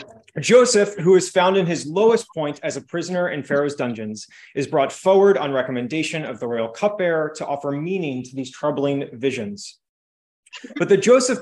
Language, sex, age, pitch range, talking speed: English, male, 30-49, 135-185 Hz, 175 wpm